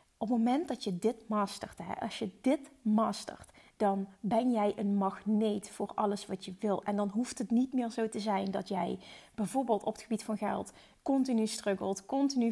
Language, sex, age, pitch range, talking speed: Dutch, female, 30-49, 205-245 Hz, 195 wpm